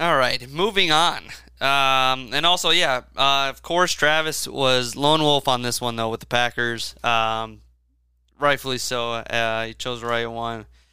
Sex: male